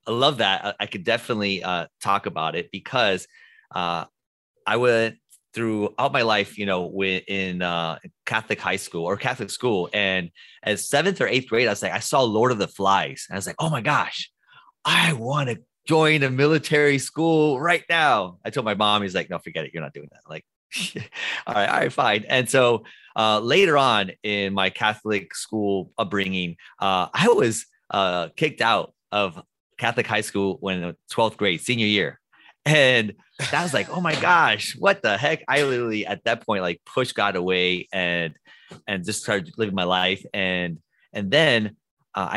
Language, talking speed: English, 185 wpm